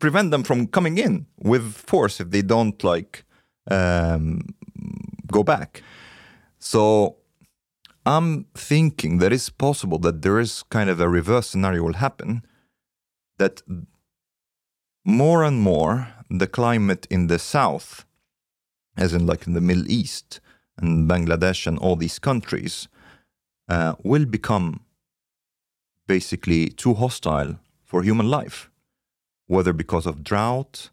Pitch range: 85-120 Hz